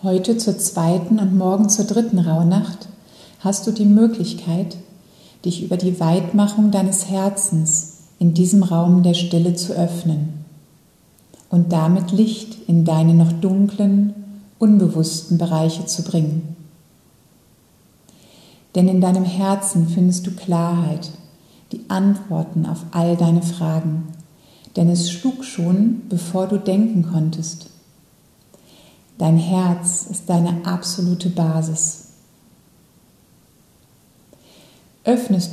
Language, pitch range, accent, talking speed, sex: German, 170-195 Hz, German, 110 wpm, female